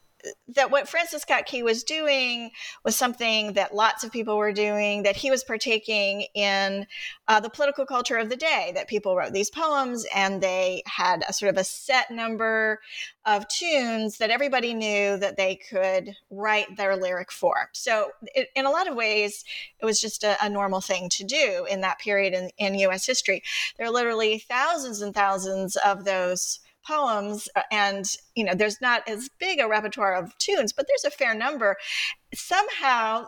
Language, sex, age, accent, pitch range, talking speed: English, female, 40-59, American, 200-255 Hz, 180 wpm